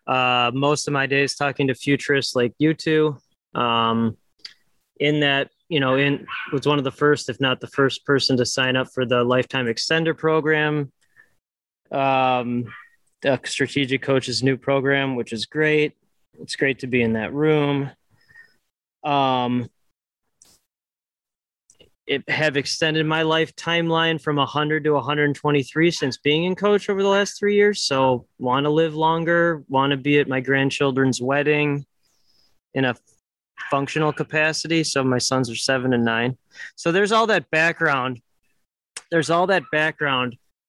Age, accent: 20-39, American